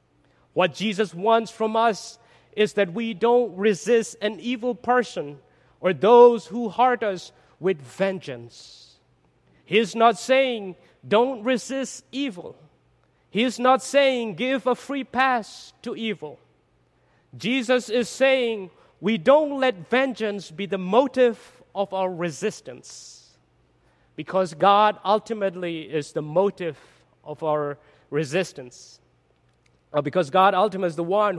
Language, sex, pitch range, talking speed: English, male, 155-220 Hz, 120 wpm